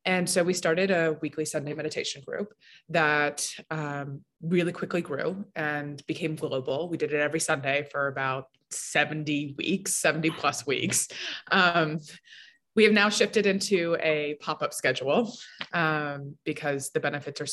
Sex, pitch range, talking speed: female, 150-190 Hz, 150 wpm